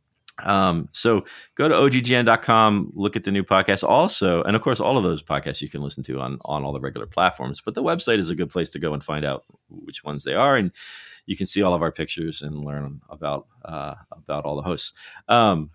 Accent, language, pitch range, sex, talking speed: American, English, 80-105 Hz, male, 235 wpm